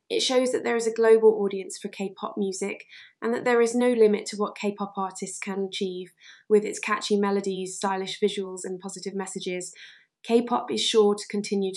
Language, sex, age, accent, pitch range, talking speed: English, female, 20-39, British, 190-215 Hz, 190 wpm